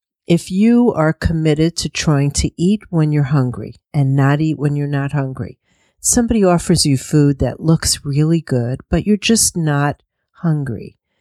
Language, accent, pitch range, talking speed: English, American, 140-170 Hz, 165 wpm